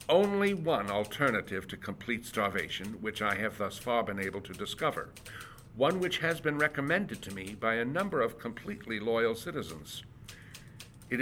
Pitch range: 110-140 Hz